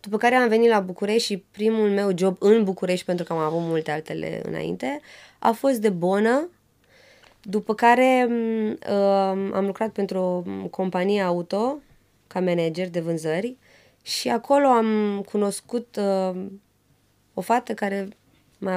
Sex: female